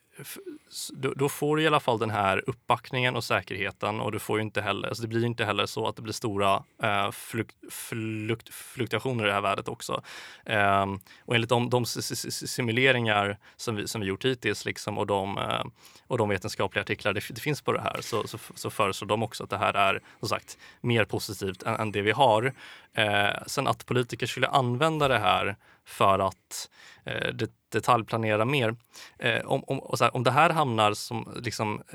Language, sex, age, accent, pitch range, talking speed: Swedish, male, 20-39, native, 105-130 Hz, 195 wpm